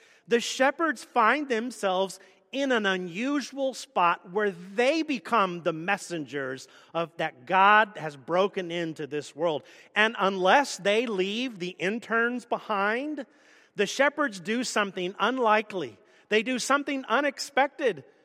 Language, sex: English, male